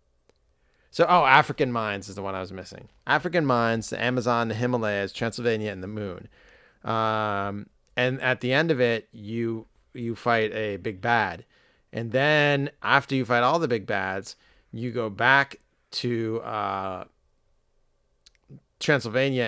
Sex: male